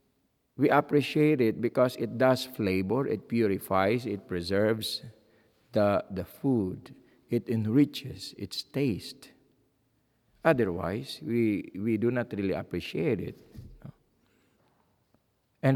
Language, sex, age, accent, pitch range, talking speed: English, male, 50-69, Filipino, 95-125 Hz, 105 wpm